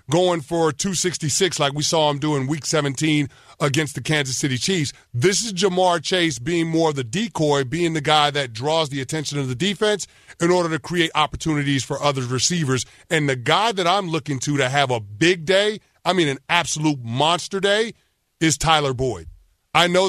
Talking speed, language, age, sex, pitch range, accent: 195 wpm, English, 30-49, male, 145-175 Hz, American